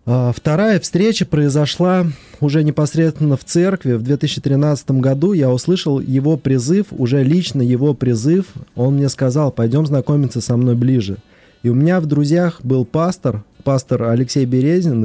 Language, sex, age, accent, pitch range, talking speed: Russian, male, 20-39, native, 120-160 Hz, 145 wpm